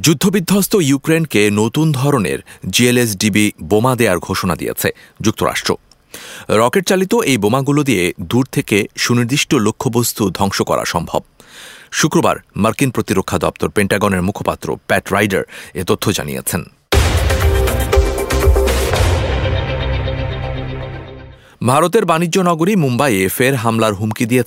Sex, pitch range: male, 95-145 Hz